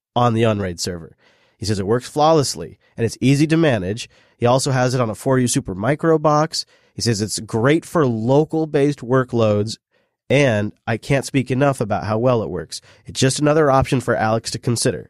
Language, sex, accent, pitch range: English, male, American, 110-145 Hz